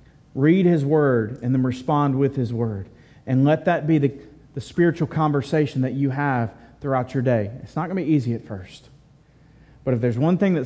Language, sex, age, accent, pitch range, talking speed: English, male, 30-49, American, 115-150 Hz, 210 wpm